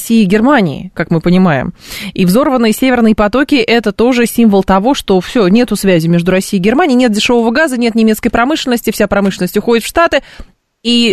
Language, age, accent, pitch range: Russian, 20-39, native, 190-230 Hz